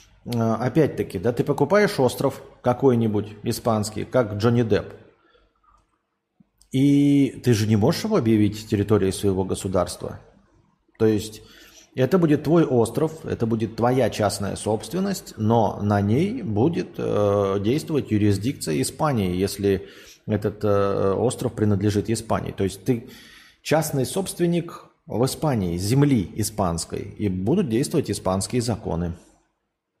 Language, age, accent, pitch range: Russian, 30-49, native, 100-135 Hz